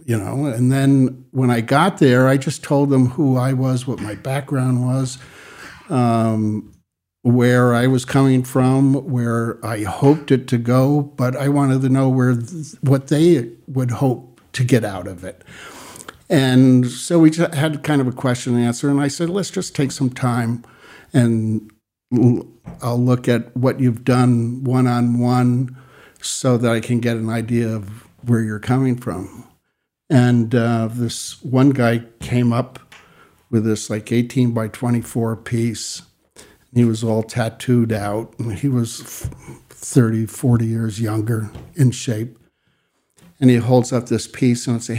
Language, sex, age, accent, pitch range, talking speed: English, male, 60-79, American, 115-140 Hz, 165 wpm